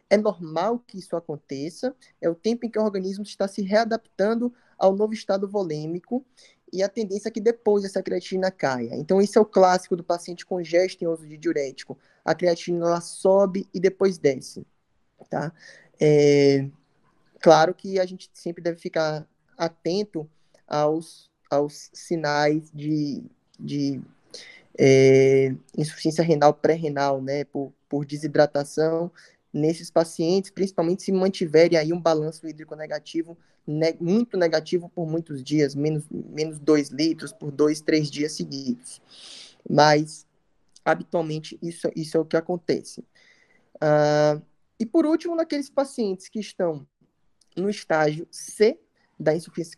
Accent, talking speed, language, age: Brazilian, 140 wpm, Portuguese, 20-39